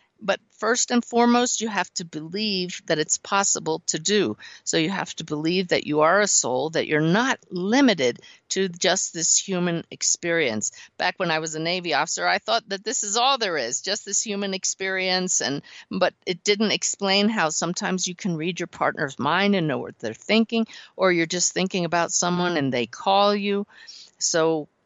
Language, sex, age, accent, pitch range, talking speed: English, female, 50-69, American, 155-205 Hz, 195 wpm